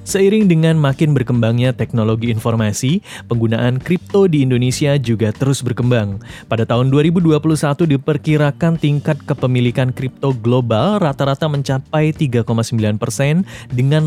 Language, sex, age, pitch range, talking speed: Indonesian, male, 20-39, 115-145 Hz, 105 wpm